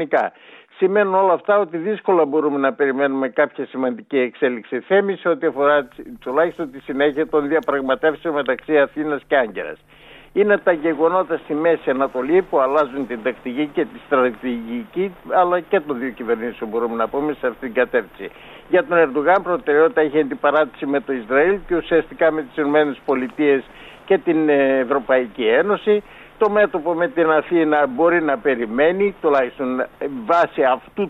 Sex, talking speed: male, 150 wpm